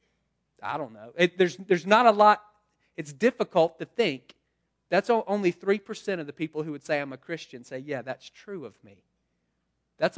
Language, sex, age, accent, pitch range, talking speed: English, male, 40-59, American, 130-175 Hz, 190 wpm